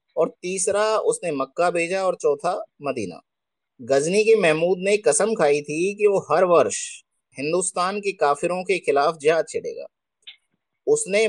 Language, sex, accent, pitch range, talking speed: Hindi, male, native, 170-275 Hz, 145 wpm